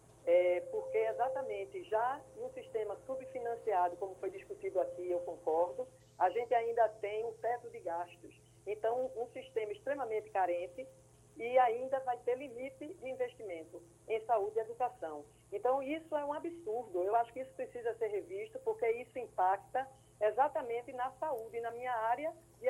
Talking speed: 155 wpm